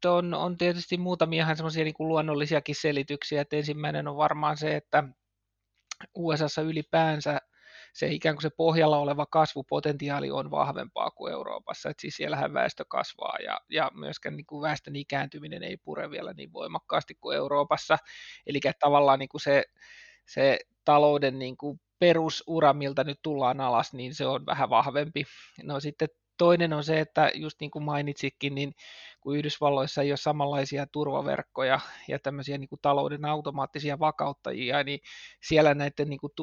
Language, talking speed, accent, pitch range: Finnish, 150 wpm, native, 140-155 Hz